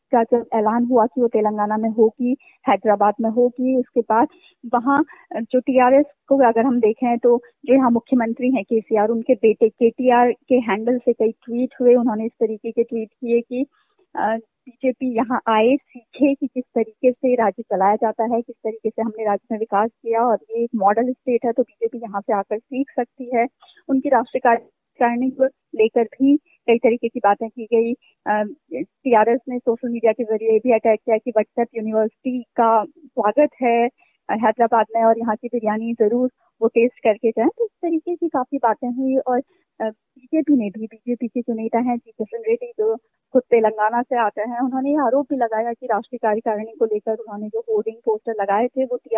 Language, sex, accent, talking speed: Hindi, female, native, 155 wpm